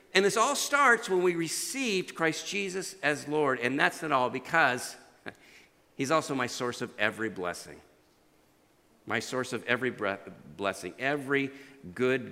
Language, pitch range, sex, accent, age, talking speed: English, 140-210 Hz, male, American, 50-69, 150 wpm